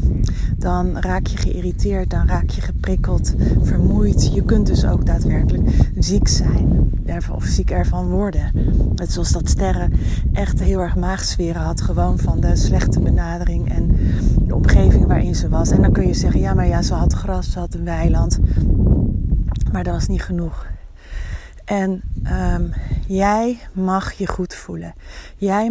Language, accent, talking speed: Dutch, Dutch, 160 wpm